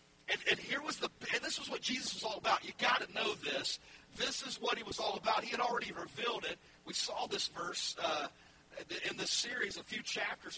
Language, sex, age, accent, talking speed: English, male, 50-69, American, 235 wpm